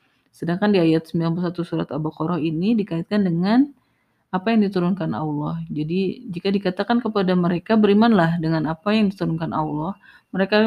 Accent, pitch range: native, 165-210 Hz